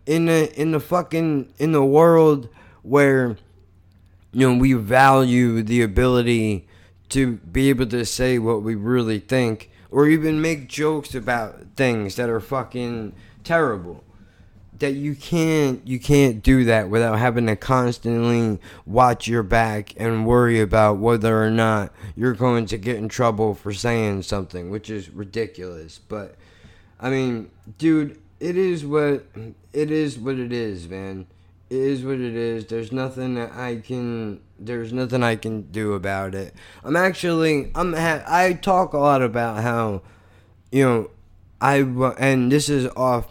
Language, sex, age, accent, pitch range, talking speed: English, male, 20-39, American, 105-135 Hz, 160 wpm